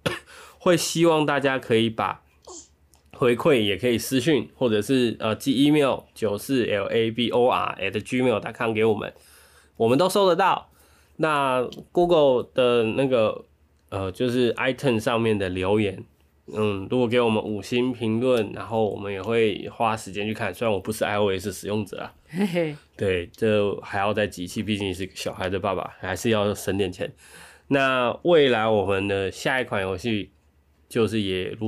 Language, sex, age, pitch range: Chinese, male, 20-39, 100-125 Hz